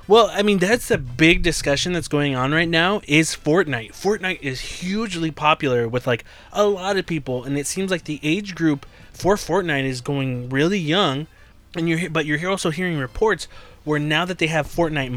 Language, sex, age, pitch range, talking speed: English, male, 20-39, 130-175 Hz, 200 wpm